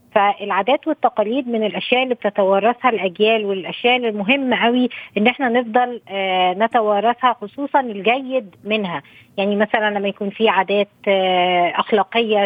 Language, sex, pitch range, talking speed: Arabic, female, 200-245 Hz, 115 wpm